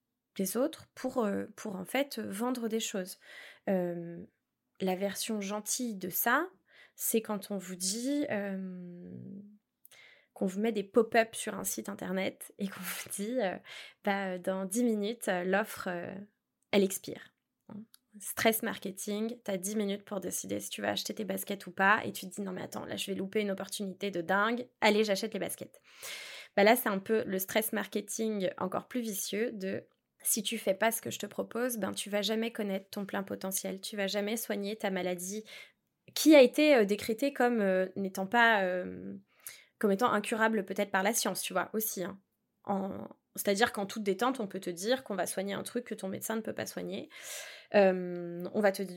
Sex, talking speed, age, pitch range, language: female, 200 wpm, 20-39, 190-225 Hz, French